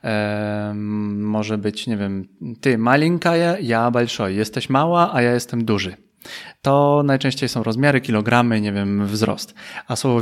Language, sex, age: Polish, male, 20-39